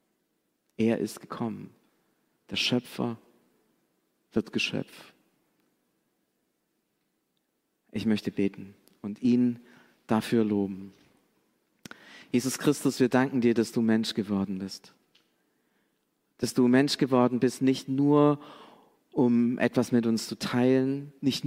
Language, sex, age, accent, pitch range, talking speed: German, male, 40-59, German, 115-135 Hz, 105 wpm